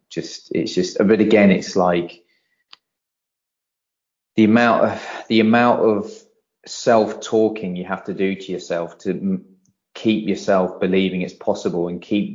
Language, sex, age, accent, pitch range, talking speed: English, male, 20-39, British, 90-105 Hz, 135 wpm